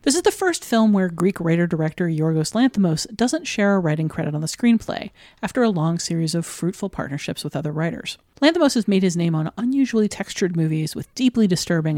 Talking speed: 200 wpm